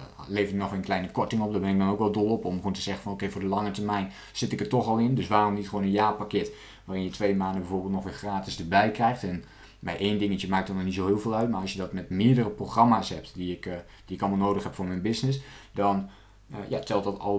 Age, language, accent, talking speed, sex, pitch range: 20-39, Dutch, Dutch, 285 wpm, male, 100-130 Hz